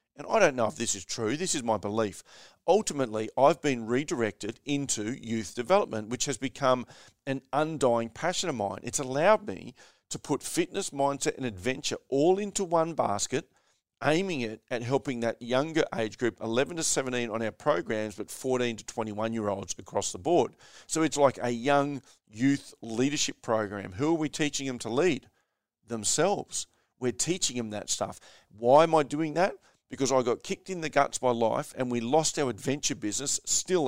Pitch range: 110-145 Hz